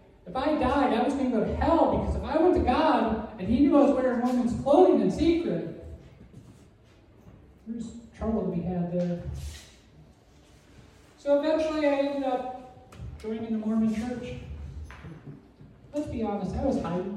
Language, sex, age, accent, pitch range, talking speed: English, male, 40-59, American, 180-240 Hz, 165 wpm